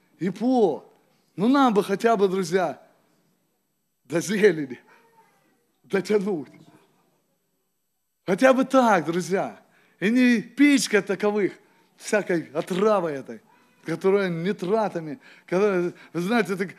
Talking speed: 95 wpm